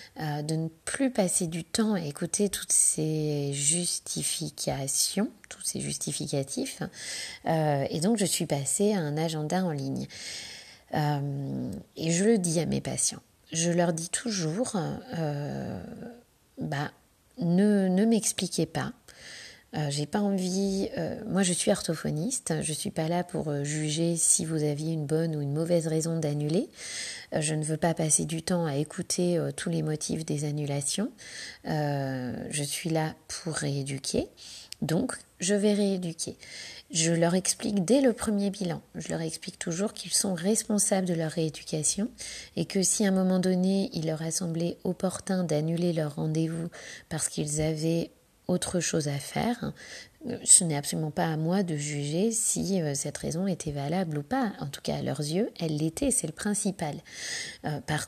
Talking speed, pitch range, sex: 165 wpm, 150-190 Hz, female